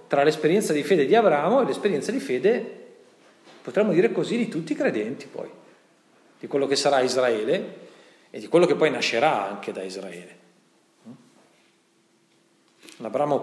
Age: 40-59